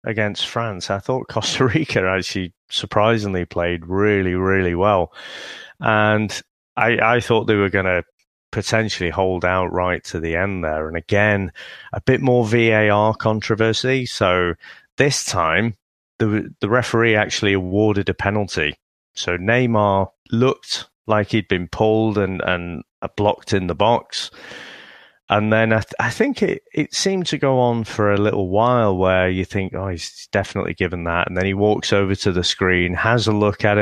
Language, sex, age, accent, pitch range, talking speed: English, male, 30-49, British, 95-115 Hz, 165 wpm